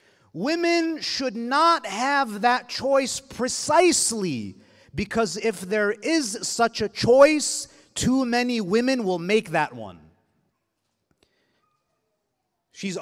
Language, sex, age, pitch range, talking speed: English, male, 30-49, 195-255 Hz, 100 wpm